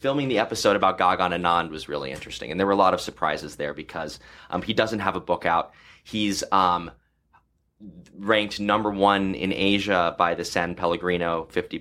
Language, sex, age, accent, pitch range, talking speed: English, male, 20-39, American, 85-100 Hz, 190 wpm